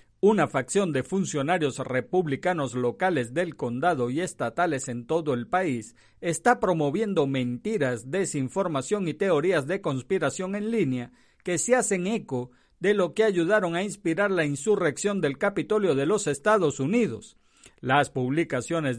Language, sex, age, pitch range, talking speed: Spanish, male, 50-69, 140-200 Hz, 140 wpm